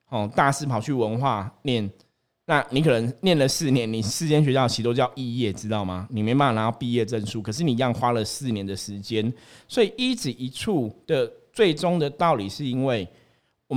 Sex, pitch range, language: male, 110-145 Hz, Chinese